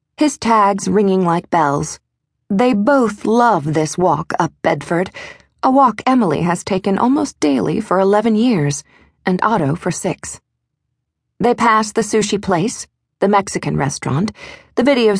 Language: English